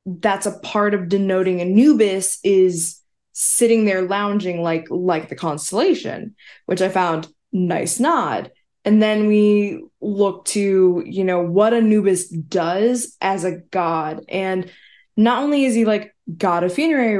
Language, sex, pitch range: English, female, 175-215 Hz